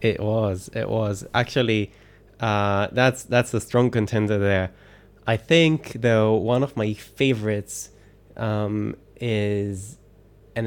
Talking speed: 125 wpm